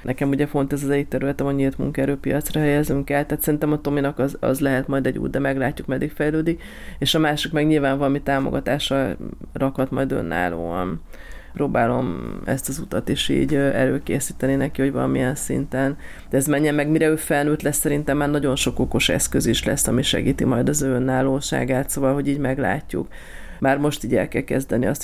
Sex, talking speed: female, 190 wpm